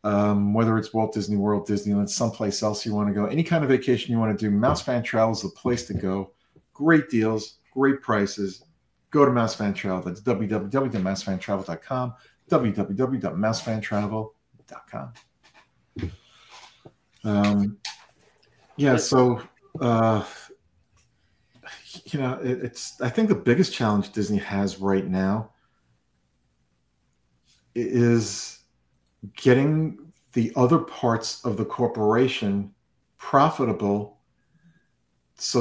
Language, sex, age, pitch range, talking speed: English, male, 50-69, 105-125 Hz, 115 wpm